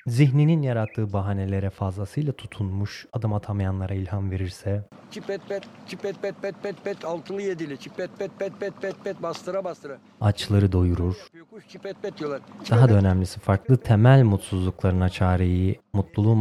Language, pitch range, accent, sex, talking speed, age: Turkish, 95-115 Hz, native, male, 110 wpm, 30-49